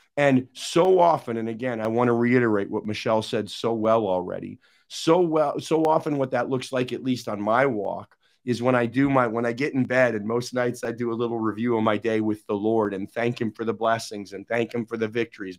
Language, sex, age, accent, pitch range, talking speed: English, male, 40-59, American, 110-130 Hz, 245 wpm